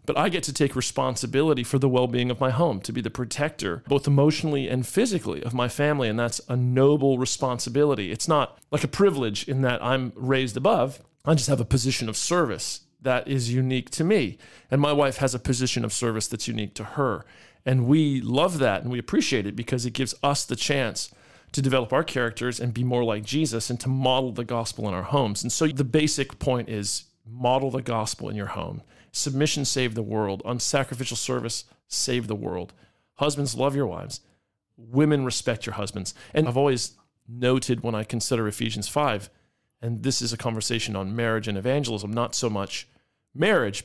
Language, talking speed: English, 195 wpm